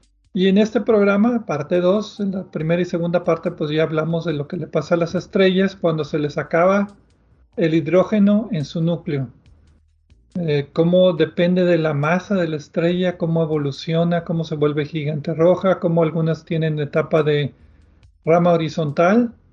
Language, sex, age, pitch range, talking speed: Spanish, male, 40-59, 155-185 Hz, 170 wpm